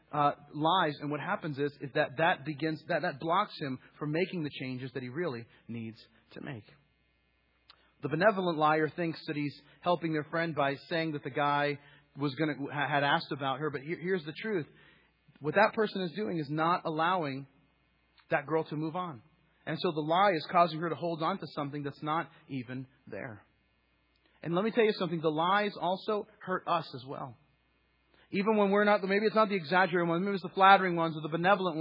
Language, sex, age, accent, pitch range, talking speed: English, male, 30-49, American, 155-205 Hz, 205 wpm